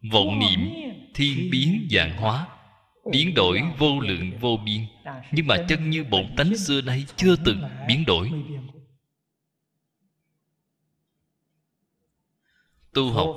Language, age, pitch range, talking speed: Vietnamese, 20-39, 120-165 Hz, 115 wpm